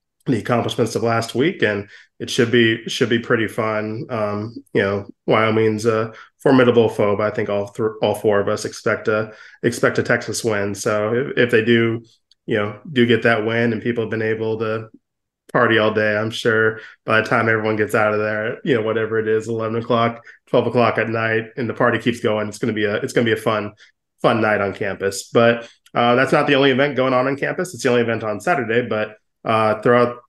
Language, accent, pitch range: English, American, 110-120 Hz